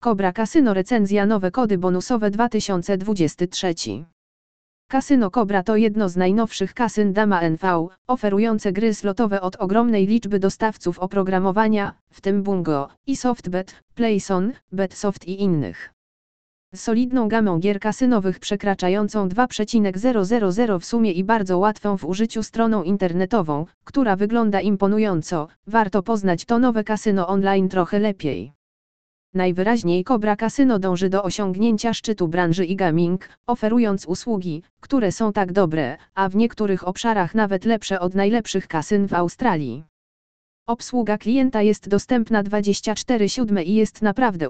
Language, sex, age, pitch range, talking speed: Polish, female, 20-39, 185-225 Hz, 130 wpm